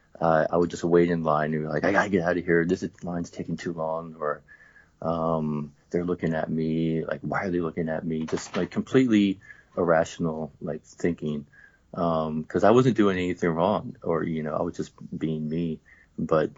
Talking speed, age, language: 210 wpm, 40-59, English